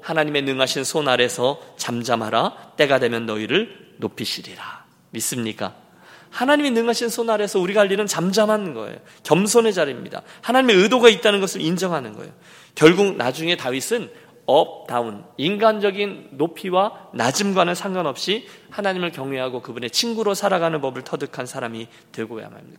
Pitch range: 140-215 Hz